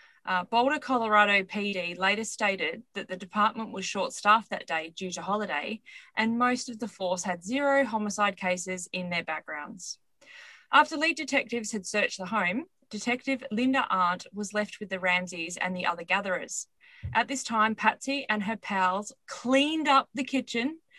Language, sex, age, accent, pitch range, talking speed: English, female, 20-39, Australian, 185-245 Hz, 165 wpm